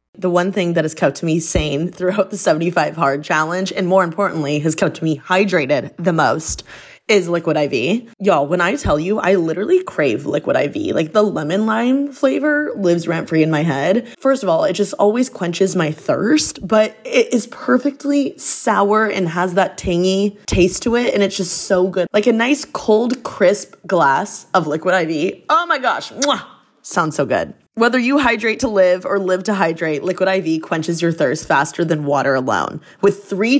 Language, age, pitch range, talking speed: English, 20-39, 165-215 Hz, 190 wpm